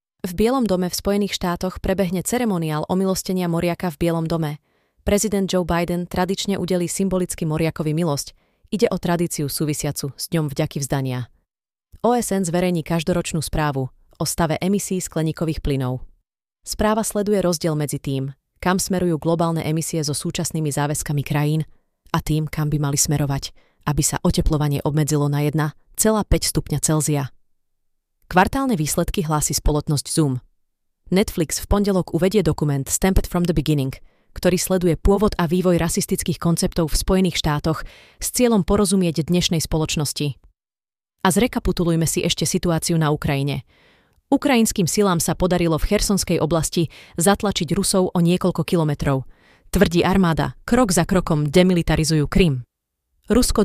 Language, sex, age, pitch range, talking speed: Slovak, female, 30-49, 150-190 Hz, 135 wpm